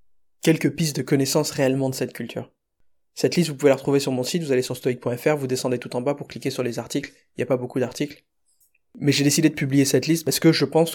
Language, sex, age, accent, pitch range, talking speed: French, male, 20-39, French, 125-145 Hz, 265 wpm